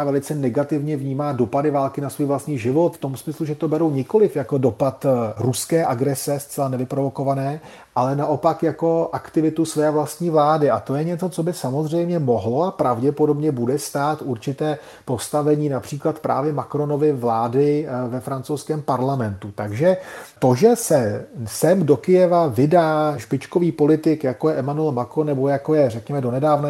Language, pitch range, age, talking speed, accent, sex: Czech, 130-155 Hz, 40-59, 155 wpm, native, male